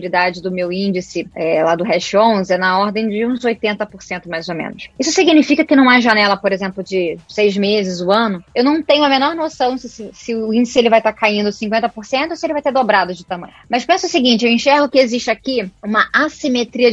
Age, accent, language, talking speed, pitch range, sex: 10-29, Brazilian, Portuguese, 235 wpm, 200-255 Hz, female